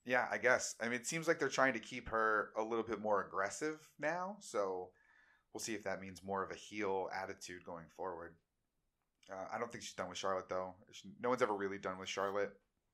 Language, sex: English, male